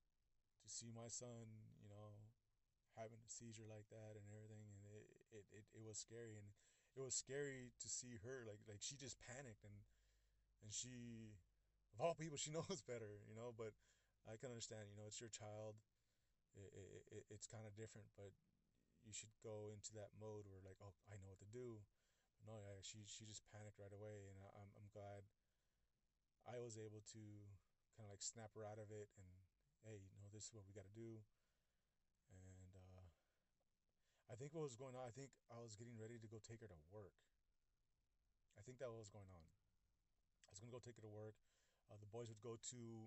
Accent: American